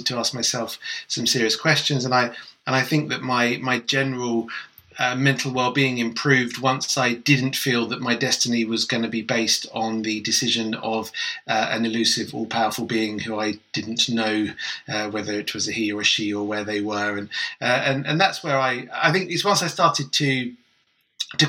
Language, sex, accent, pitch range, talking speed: English, male, British, 120-160 Hz, 200 wpm